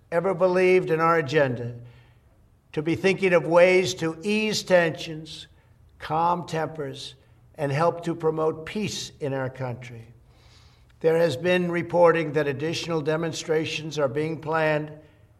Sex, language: male, English